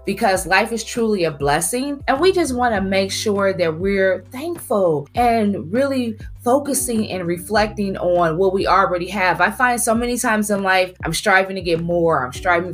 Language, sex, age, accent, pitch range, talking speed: English, female, 20-39, American, 170-220 Hz, 190 wpm